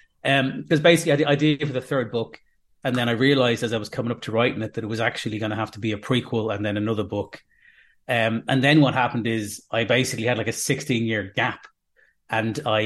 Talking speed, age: 245 wpm, 30-49